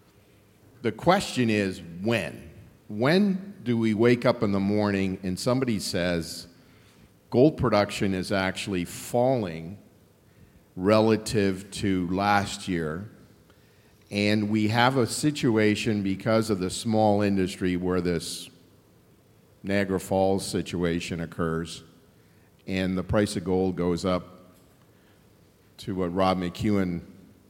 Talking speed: 110 wpm